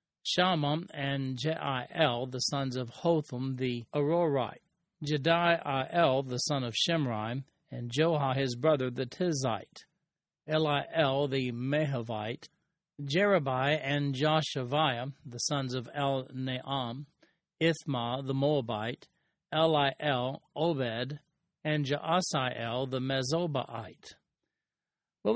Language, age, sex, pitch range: English, 40-59, male, 130-155 Hz